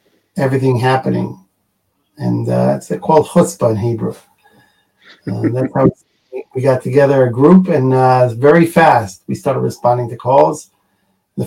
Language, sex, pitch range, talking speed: English, male, 120-145 Hz, 140 wpm